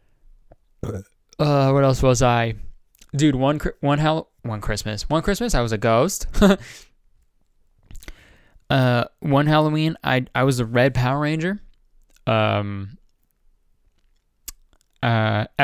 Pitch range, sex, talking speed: 100-130 Hz, male, 110 wpm